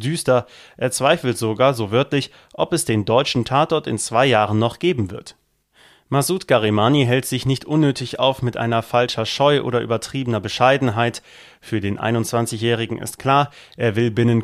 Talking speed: 160 wpm